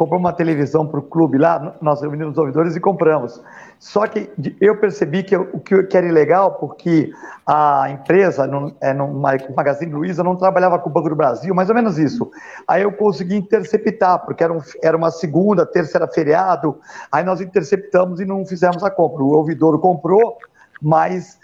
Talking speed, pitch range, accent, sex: 180 wpm, 160-200 Hz, Brazilian, male